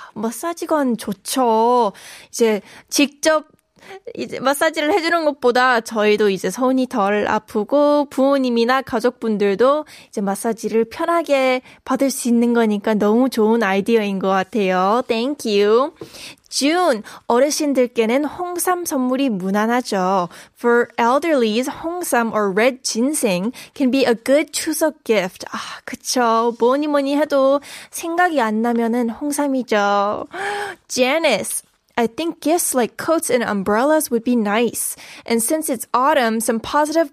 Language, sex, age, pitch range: Korean, female, 10-29, 230-285 Hz